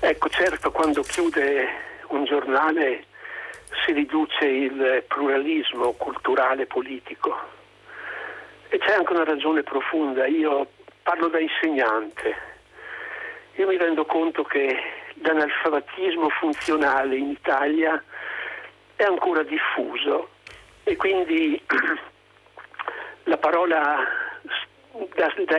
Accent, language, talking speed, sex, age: native, Italian, 95 wpm, male, 60-79